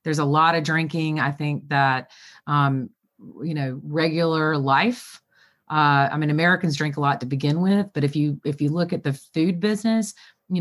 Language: English